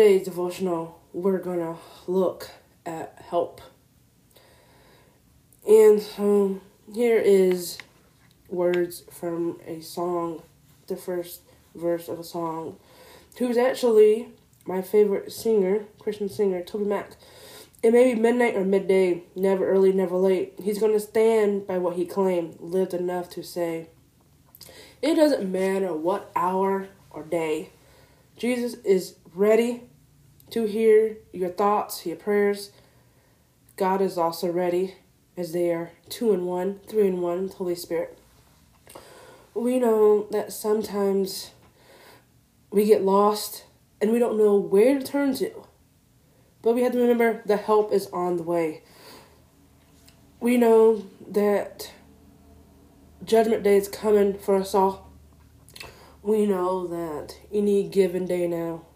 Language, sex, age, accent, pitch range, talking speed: English, female, 20-39, American, 175-215 Hz, 125 wpm